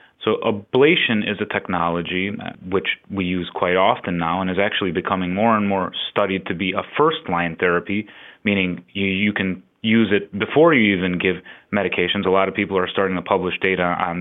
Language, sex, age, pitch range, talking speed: English, male, 30-49, 95-120 Hz, 190 wpm